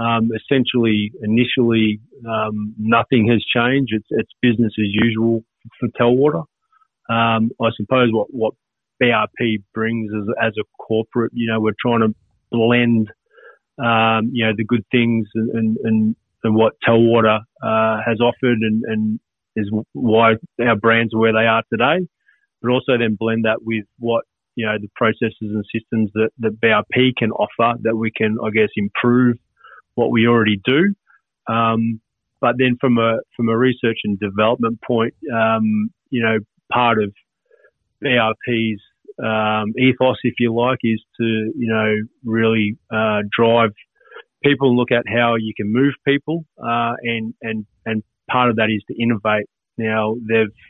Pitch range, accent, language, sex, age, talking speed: 110-120 Hz, Australian, English, male, 30-49, 155 wpm